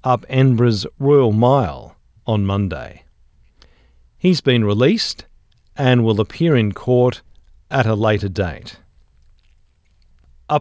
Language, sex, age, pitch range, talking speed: English, male, 50-69, 100-140 Hz, 105 wpm